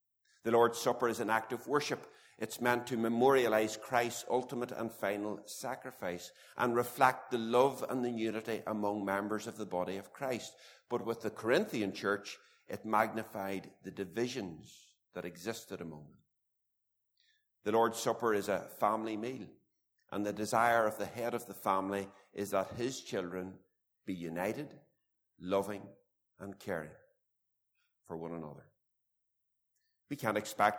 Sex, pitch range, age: male, 95-115 Hz, 60-79